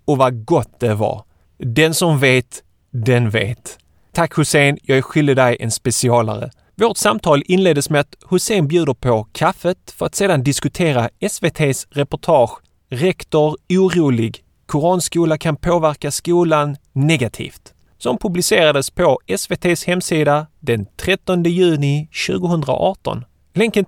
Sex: male